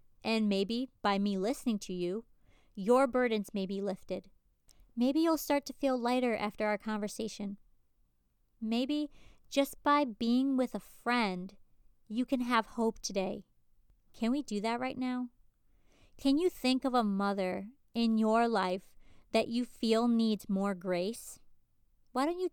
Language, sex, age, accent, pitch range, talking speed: English, female, 30-49, American, 195-245 Hz, 150 wpm